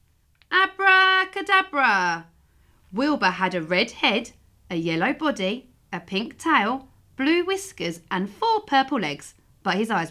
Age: 40-59